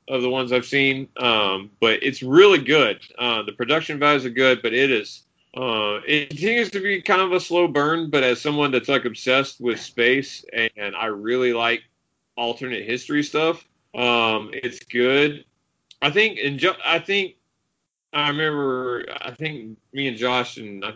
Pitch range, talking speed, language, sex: 115-145 Hz, 180 wpm, English, male